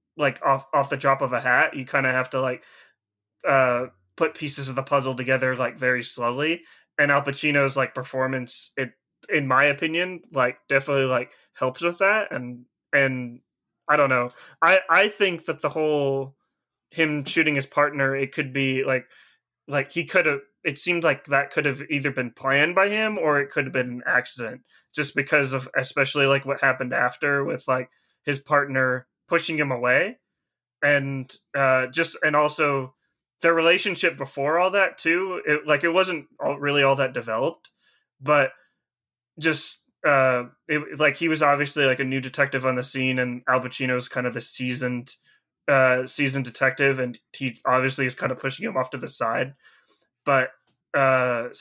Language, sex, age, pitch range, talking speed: English, male, 20-39, 130-150 Hz, 175 wpm